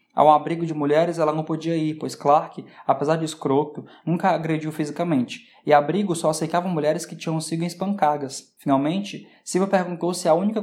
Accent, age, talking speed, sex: Brazilian, 20-39, 175 wpm, male